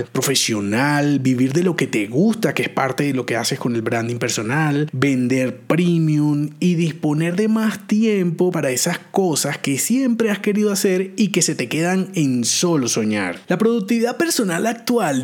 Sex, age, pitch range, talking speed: male, 30-49, 145-210 Hz, 175 wpm